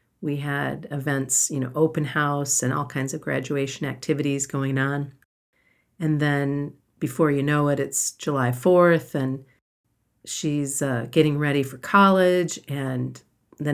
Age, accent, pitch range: 40-59, American, 135-155 Hz